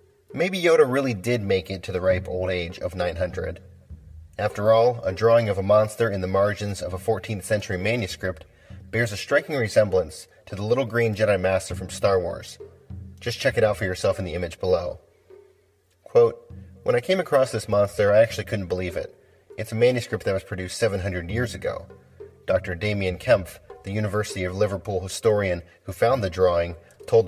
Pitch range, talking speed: 95-120 Hz, 185 wpm